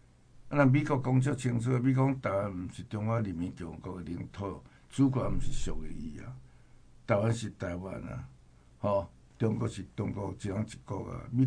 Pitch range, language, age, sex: 85-120 Hz, Chinese, 60-79, male